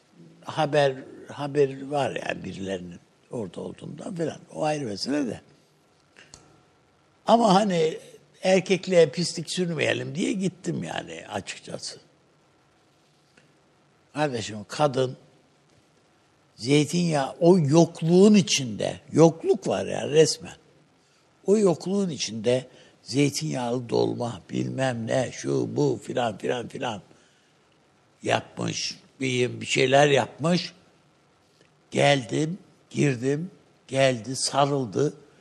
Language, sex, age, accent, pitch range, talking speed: Turkish, male, 60-79, native, 130-170 Hz, 85 wpm